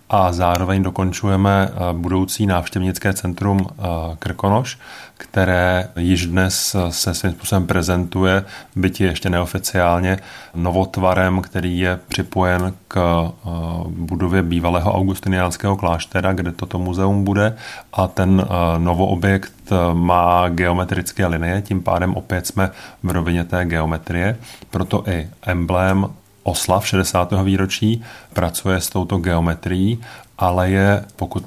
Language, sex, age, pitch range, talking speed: Czech, male, 30-49, 90-100 Hz, 110 wpm